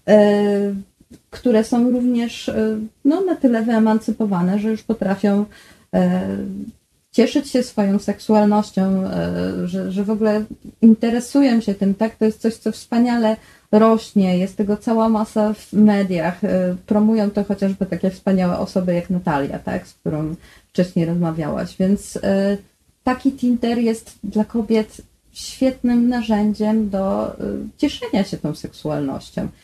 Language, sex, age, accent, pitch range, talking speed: Polish, female, 30-49, native, 185-230 Hz, 115 wpm